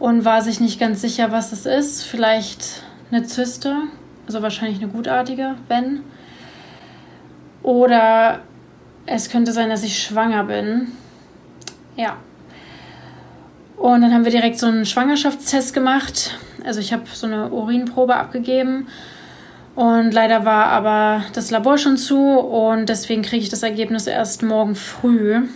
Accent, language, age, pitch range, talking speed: German, German, 20-39, 220-245 Hz, 140 wpm